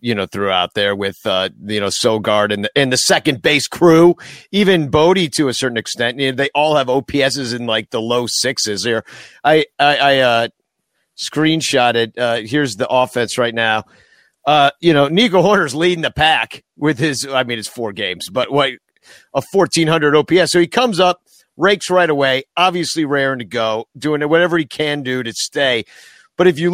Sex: male